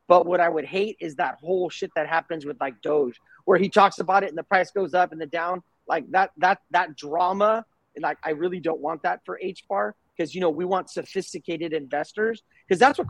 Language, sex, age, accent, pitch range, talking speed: English, male, 30-49, American, 160-190 Hz, 230 wpm